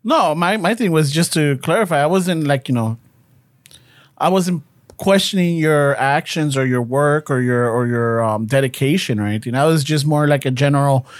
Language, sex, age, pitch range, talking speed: English, male, 30-49, 140-180 Hz, 195 wpm